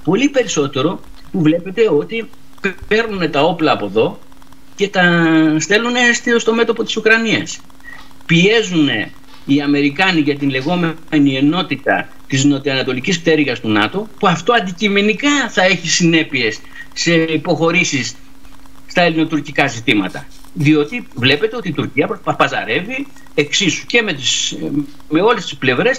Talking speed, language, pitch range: 125 wpm, Greek, 150-230 Hz